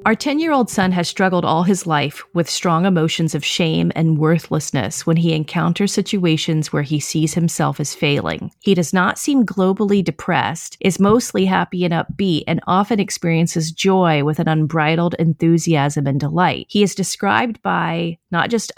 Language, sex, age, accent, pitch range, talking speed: English, female, 40-59, American, 160-190 Hz, 165 wpm